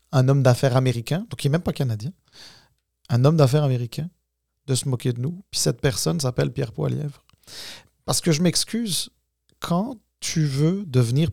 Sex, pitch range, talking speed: male, 125-155 Hz, 175 wpm